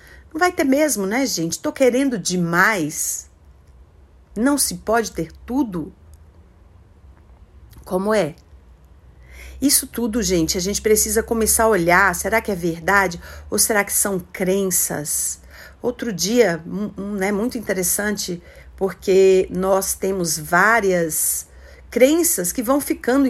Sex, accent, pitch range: female, Brazilian, 180-240 Hz